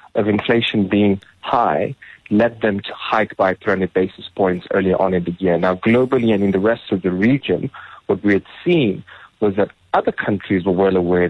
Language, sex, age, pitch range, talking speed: English, male, 40-59, 95-105 Hz, 195 wpm